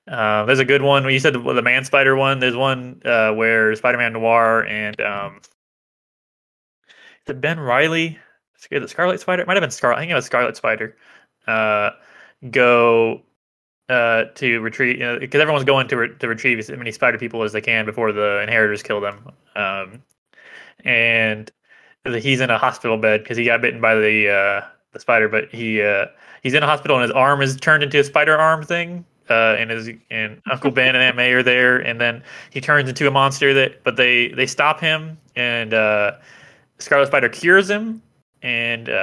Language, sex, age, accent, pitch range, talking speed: English, male, 20-39, American, 115-140 Hz, 195 wpm